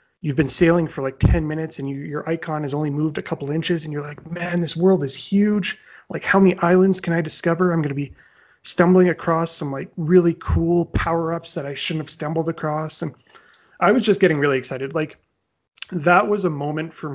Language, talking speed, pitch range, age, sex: English, 220 wpm, 135-175 Hz, 30-49, male